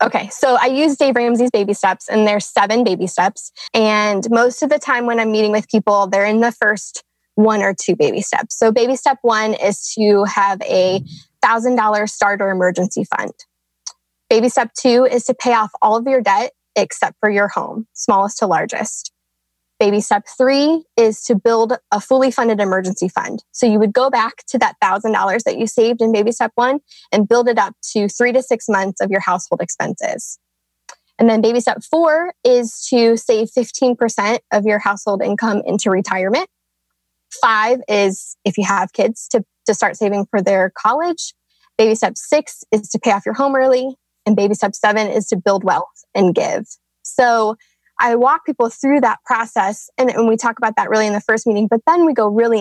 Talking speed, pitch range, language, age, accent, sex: 195 wpm, 200-240 Hz, English, 20-39, American, female